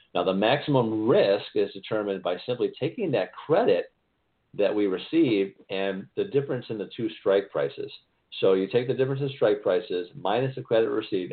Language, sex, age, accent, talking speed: English, male, 50-69, American, 180 wpm